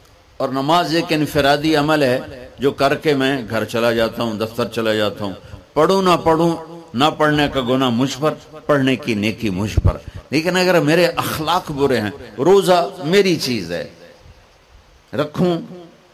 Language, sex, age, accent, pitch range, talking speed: English, male, 60-79, Indian, 110-155 Hz, 160 wpm